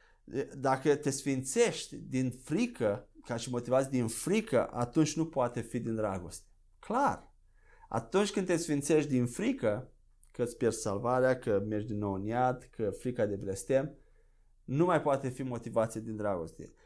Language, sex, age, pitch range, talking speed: Romanian, male, 20-39, 115-145 Hz, 155 wpm